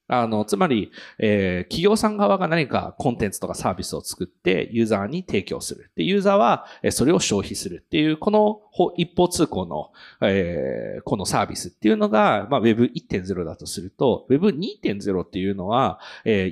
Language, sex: Japanese, male